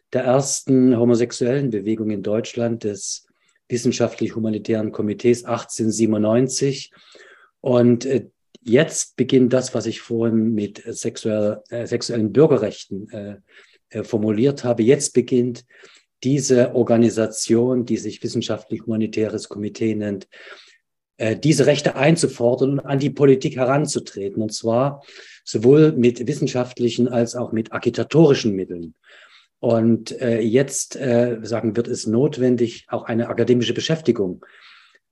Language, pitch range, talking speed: German, 110-125 Hz, 110 wpm